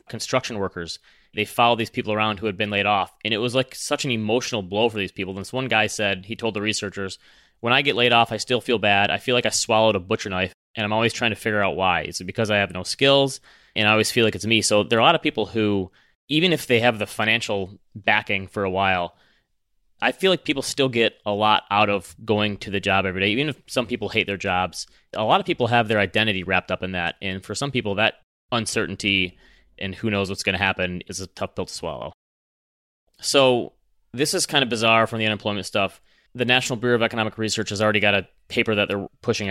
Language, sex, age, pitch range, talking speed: English, male, 20-39, 100-120 Hz, 250 wpm